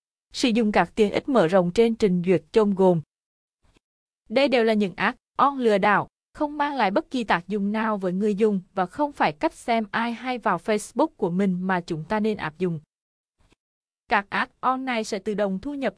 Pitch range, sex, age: 190-240 Hz, female, 20-39